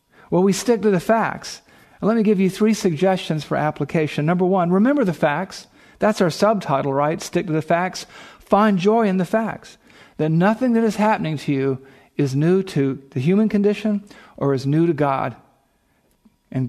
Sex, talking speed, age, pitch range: male, 185 wpm, 50-69, 140-190 Hz